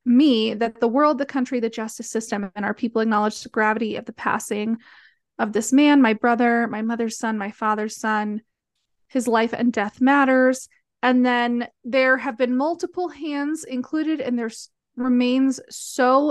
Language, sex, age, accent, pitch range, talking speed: English, female, 30-49, American, 230-270 Hz, 170 wpm